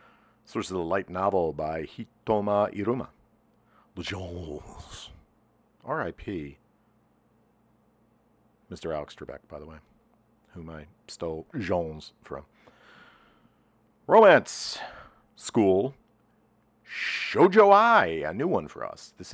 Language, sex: English, male